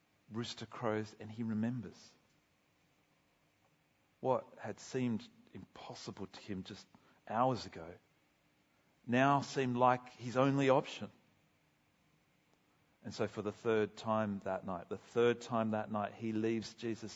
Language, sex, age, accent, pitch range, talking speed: English, male, 40-59, Australian, 105-125 Hz, 125 wpm